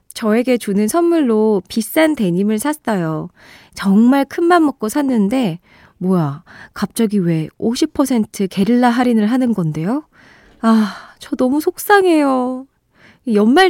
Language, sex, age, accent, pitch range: Korean, female, 20-39, native, 190-285 Hz